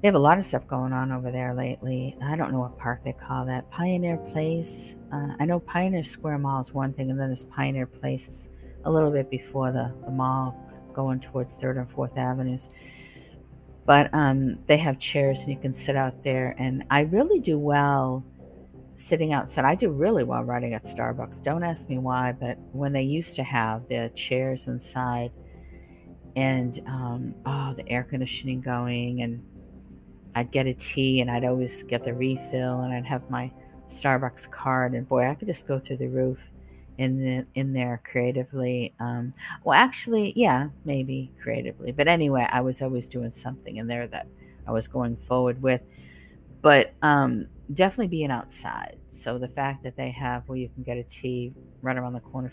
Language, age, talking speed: English, 50-69, 190 wpm